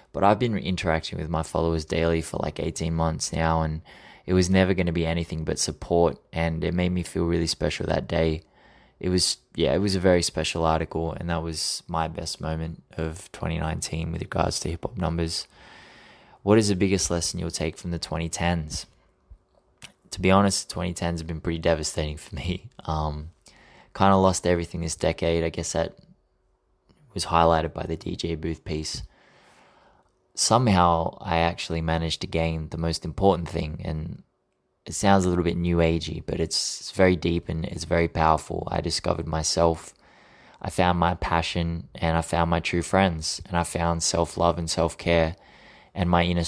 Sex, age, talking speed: male, 20-39, 185 wpm